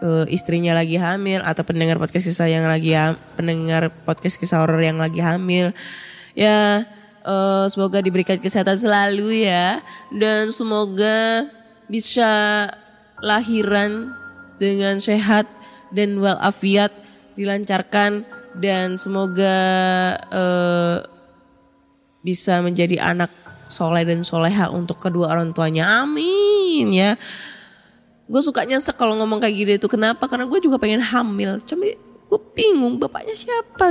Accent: native